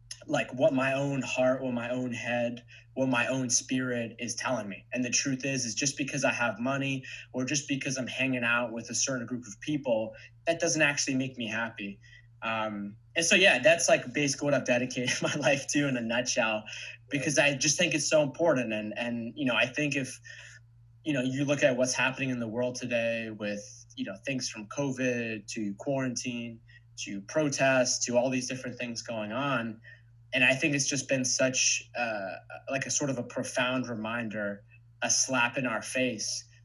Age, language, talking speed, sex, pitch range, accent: 20-39, English, 200 wpm, male, 115-130 Hz, American